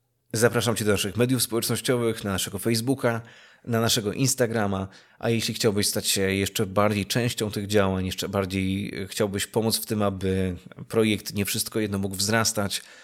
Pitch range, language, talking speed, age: 100-115 Hz, Polish, 160 wpm, 20-39